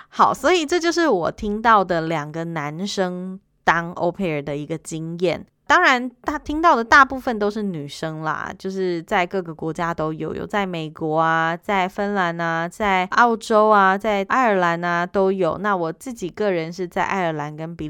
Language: Chinese